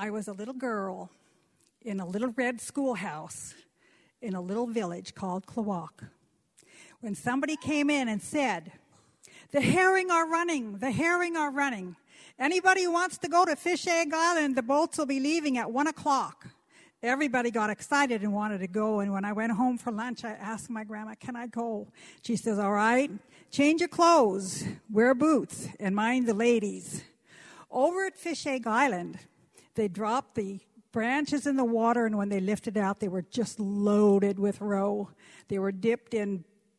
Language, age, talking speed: English, 60-79, 175 wpm